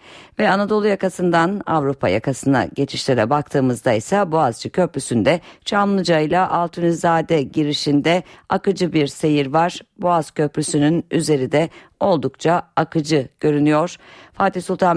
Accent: native